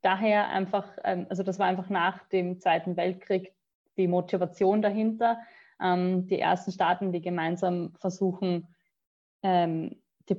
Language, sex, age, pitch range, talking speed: German, female, 20-39, 175-200 Hz, 115 wpm